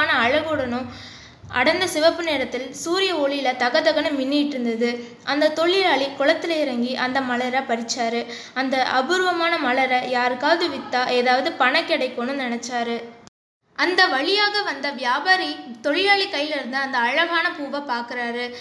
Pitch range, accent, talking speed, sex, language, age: 250-320 Hz, native, 115 wpm, female, Tamil, 20-39